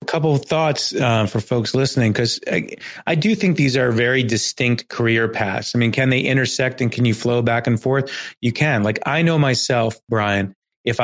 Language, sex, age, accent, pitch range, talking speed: English, male, 30-49, American, 105-125 Hz, 210 wpm